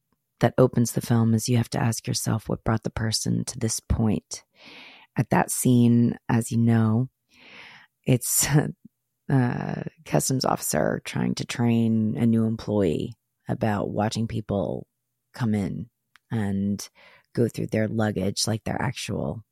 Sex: female